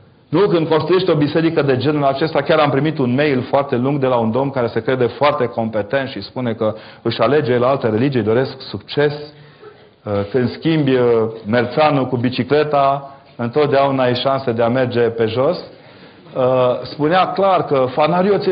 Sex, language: male, Romanian